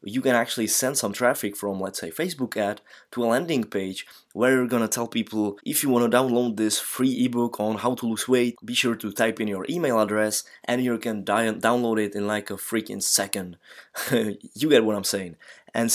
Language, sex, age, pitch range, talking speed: English, male, 20-39, 105-120 Hz, 220 wpm